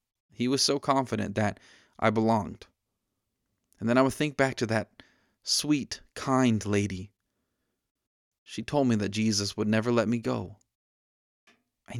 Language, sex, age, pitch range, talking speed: English, male, 20-39, 110-135 Hz, 145 wpm